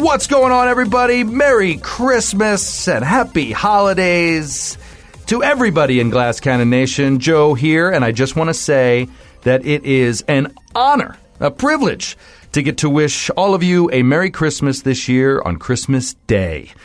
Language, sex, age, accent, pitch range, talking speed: English, male, 40-59, American, 125-170 Hz, 160 wpm